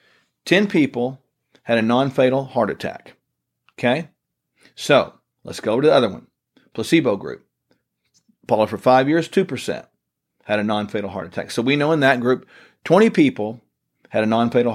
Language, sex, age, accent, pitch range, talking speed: English, male, 40-59, American, 120-155 Hz, 155 wpm